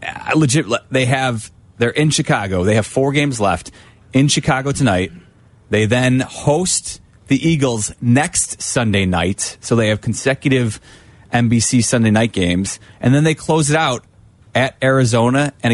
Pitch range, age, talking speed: 110-145 Hz, 30-49, 150 wpm